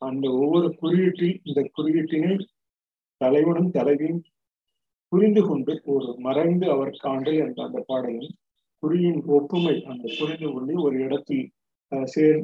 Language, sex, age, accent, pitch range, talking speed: Tamil, male, 50-69, native, 130-155 Hz, 115 wpm